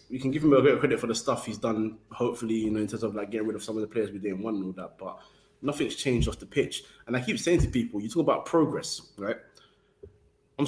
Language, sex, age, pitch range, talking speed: English, male, 20-39, 105-130 Hz, 285 wpm